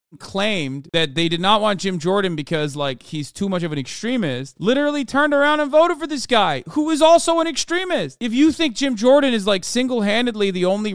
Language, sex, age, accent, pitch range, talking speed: English, male, 30-49, American, 160-235 Hz, 215 wpm